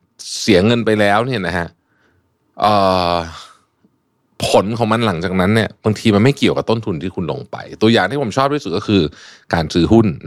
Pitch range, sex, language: 100-130 Hz, male, Thai